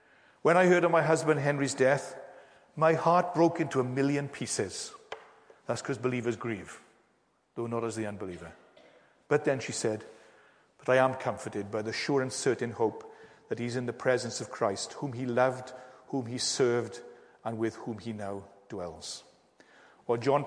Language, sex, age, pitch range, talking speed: English, male, 40-59, 125-165 Hz, 175 wpm